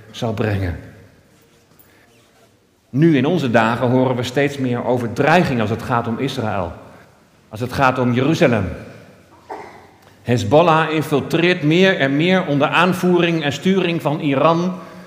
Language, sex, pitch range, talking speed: Dutch, male, 130-180 Hz, 130 wpm